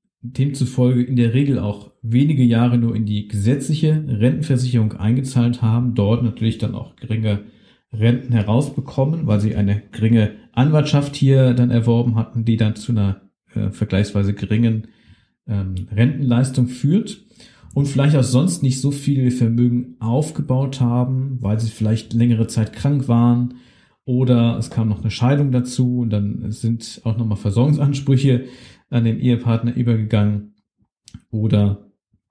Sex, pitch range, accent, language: male, 110-125 Hz, German, German